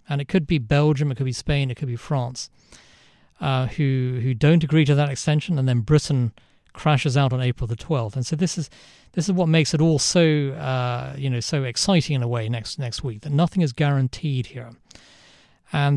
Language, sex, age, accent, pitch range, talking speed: English, male, 40-59, British, 125-150 Hz, 220 wpm